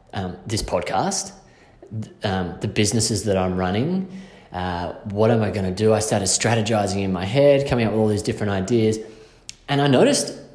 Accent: Australian